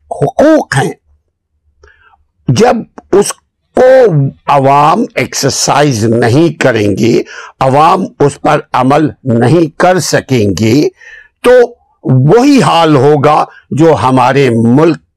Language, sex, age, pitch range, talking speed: Urdu, male, 60-79, 130-190 Hz, 100 wpm